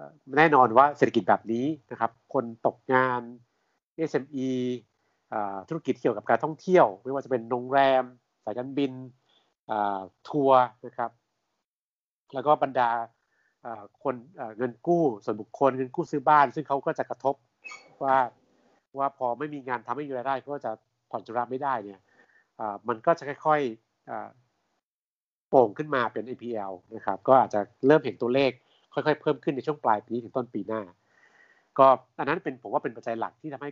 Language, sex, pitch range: Thai, male, 115-140 Hz